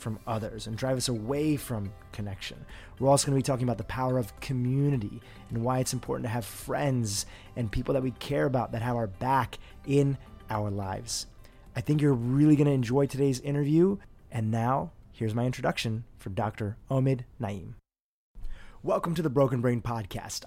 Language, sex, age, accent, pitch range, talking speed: English, male, 30-49, American, 105-135 Hz, 185 wpm